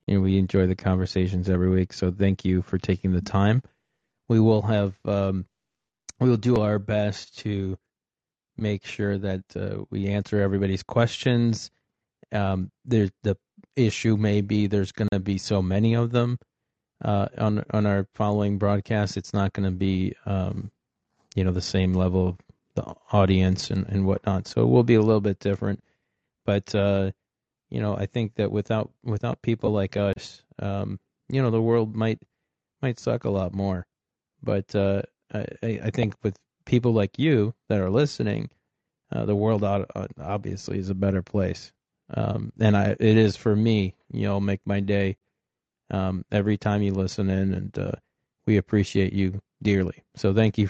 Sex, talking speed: male, 175 wpm